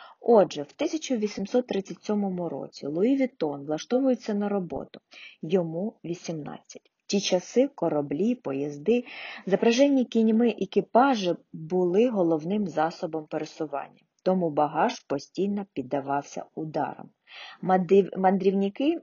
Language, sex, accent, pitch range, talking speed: Ukrainian, female, native, 160-210 Hz, 90 wpm